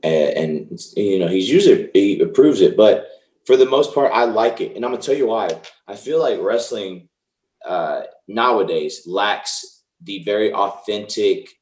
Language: English